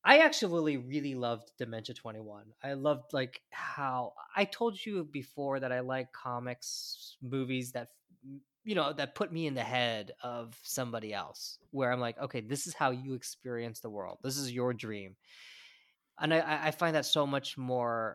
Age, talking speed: 20-39, 180 wpm